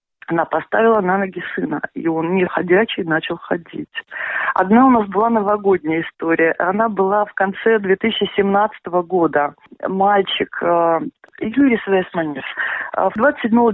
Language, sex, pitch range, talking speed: Russian, female, 170-220 Hz, 120 wpm